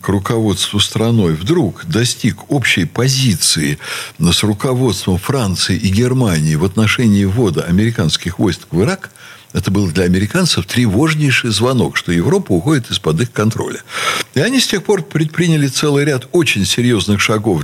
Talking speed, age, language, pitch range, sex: 145 wpm, 60-79, Russian, 95-140 Hz, male